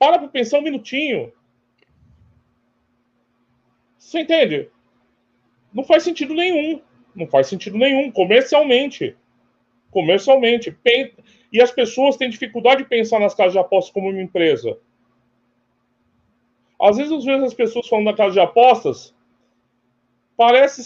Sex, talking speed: male, 125 wpm